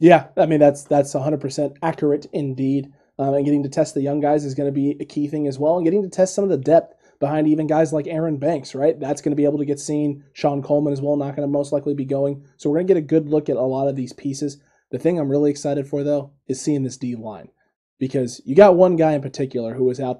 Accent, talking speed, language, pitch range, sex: American, 280 wpm, English, 140-165 Hz, male